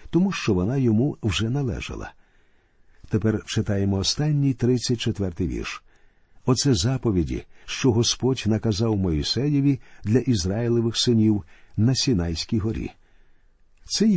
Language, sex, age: Ukrainian, male, 50-69